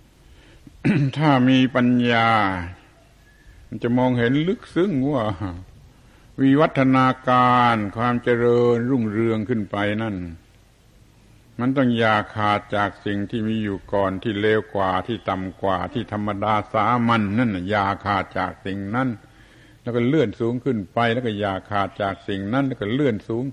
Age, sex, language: 70-89, male, Thai